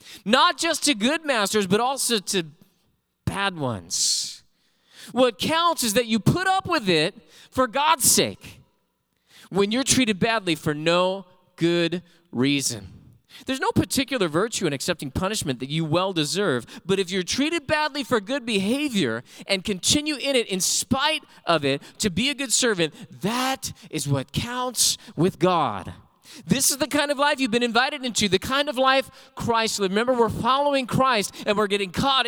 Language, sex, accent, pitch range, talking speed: English, male, American, 160-255 Hz, 170 wpm